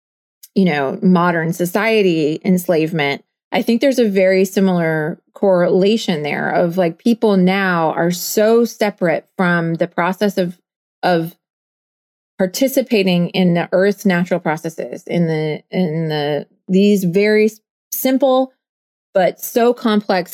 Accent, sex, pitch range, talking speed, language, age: American, female, 170-205 Hz, 120 wpm, English, 30-49